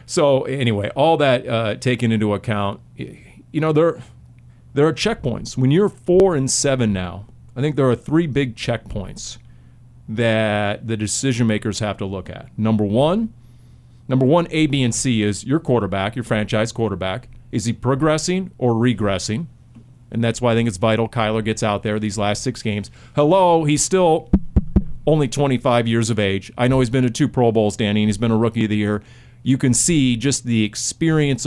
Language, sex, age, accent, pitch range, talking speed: English, male, 40-59, American, 110-140 Hz, 190 wpm